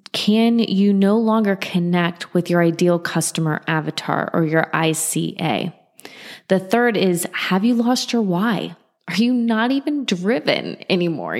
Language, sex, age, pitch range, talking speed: English, female, 20-39, 165-215 Hz, 140 wpm